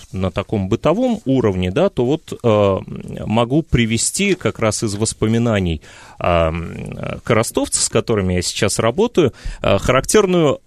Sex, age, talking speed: male, 30-49, 130 wpm